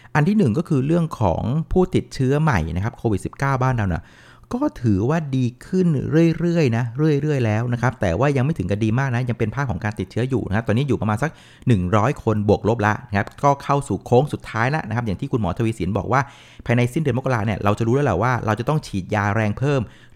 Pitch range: 95-130 Hz